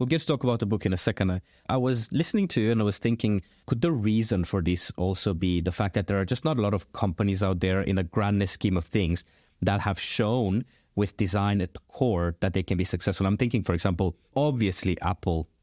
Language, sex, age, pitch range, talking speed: English, male, 30-49, 95-120 Hz, 250 wpm